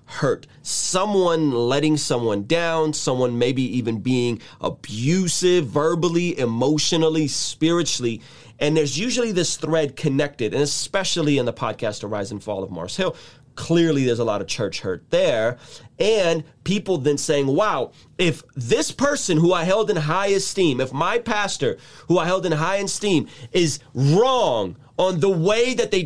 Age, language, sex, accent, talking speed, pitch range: 30-49, English, male, American, 160 wpm, 135-195 Hz